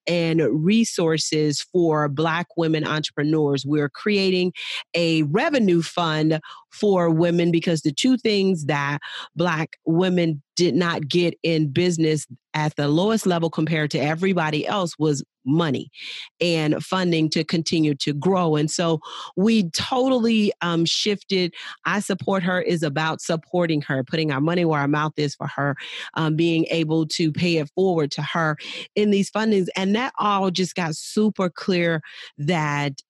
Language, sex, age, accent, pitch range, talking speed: English, female, 40-59, American, 150-185 Hz, 150 wpm